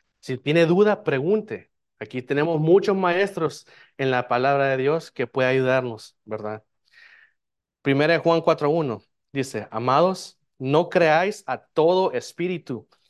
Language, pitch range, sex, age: Spanish, 130-170 Hz, male, 30-49